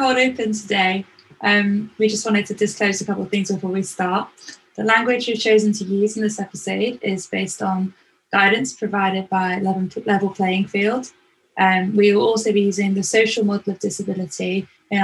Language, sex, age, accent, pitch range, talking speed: English, female, 10-29, British, 190-215 Hz, 190 wpm